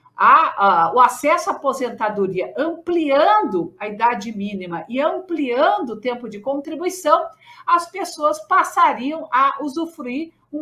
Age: 50-69